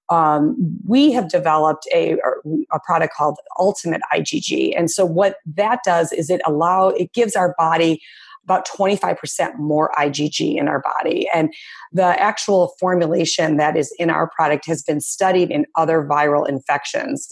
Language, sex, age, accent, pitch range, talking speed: English, female, 30-49, American, 155-185 Hz, 165 wpm